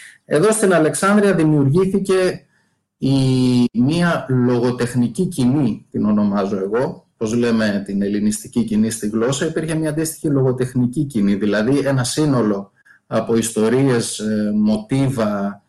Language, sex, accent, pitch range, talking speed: Greek, male, native, 110-145 Hz, 105 wpm